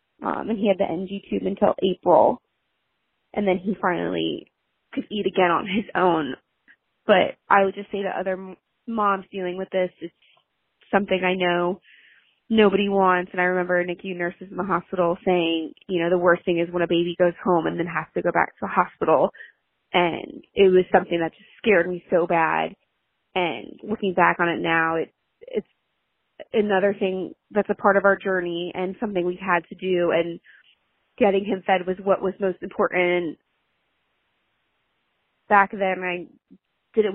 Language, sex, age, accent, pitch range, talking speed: English, female, 20-39, American, 180-200 Hz, 180 wpm